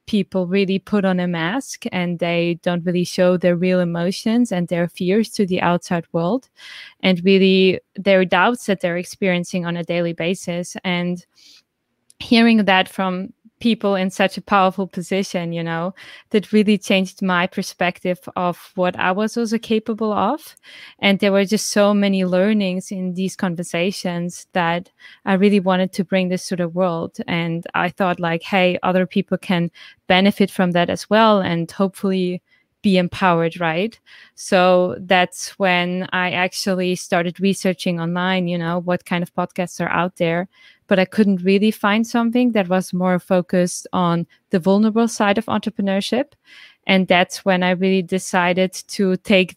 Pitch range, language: 180-200 Hz, English